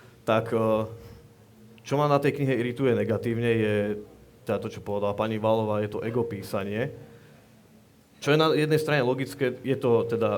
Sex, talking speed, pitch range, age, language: male, 155 wpm, 105-120 Hz, 30-49, Slovak